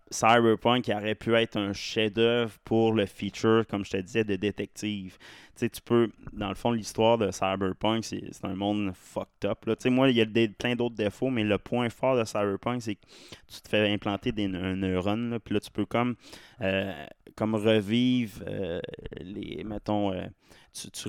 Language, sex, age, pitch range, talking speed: English, male, 20-39, 100-110 Hz, 190 wpm